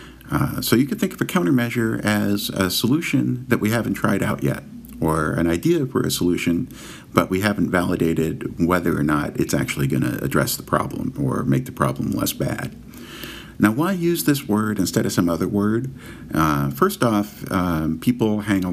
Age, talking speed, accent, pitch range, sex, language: 40-59, 190 wpm, American, 75-105 Hz, male, English